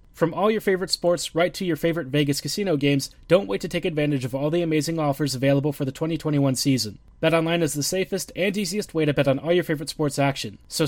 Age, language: 30-49, English